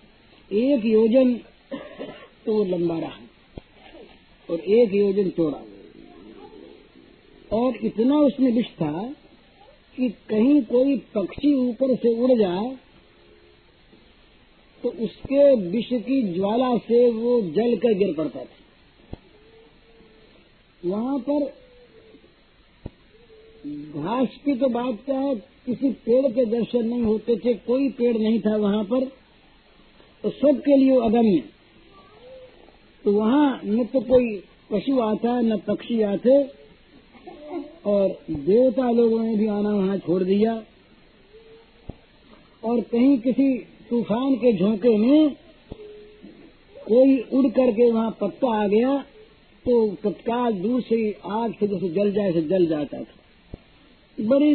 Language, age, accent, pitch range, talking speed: Hindi, 50-69, native, 210-260 Hz, 120 wpm